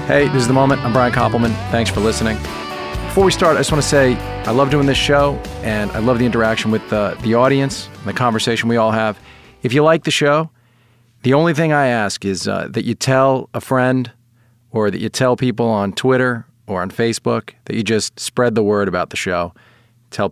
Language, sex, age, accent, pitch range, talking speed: English, male, 40-59, American, 105-130 Hz, 225 wpm